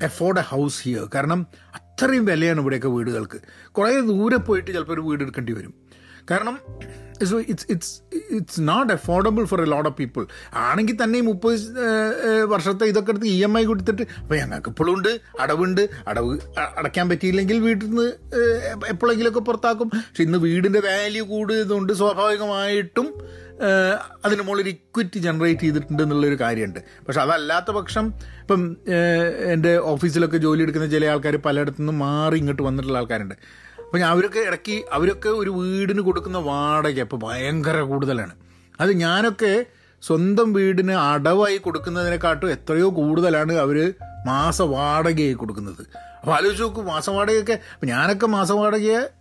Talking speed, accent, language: 130 wpm, native, Malayalam